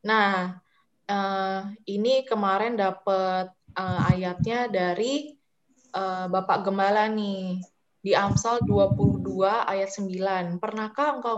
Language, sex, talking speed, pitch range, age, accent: Indonesian, female, 100 wpm, 195-240 Hz, 20-39, native